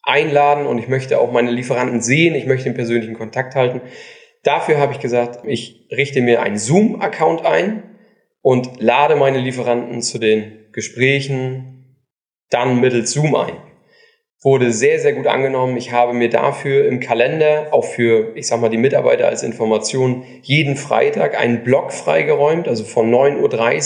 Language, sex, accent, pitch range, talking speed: German, male, German, 120-150 Hz, 160 wpm